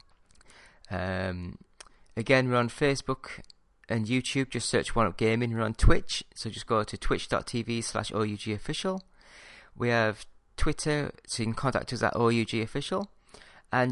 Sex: male